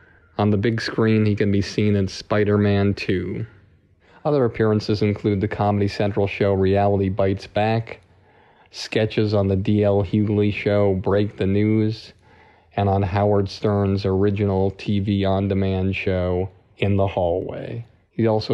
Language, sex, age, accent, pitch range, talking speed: English, male, 40-59, American, 95-105 Hz, 140 wpm